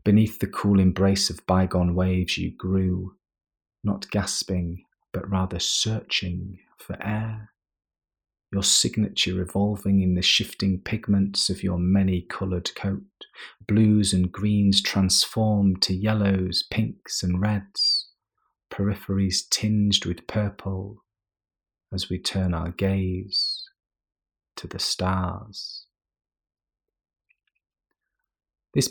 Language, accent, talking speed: English, British, 100 wpm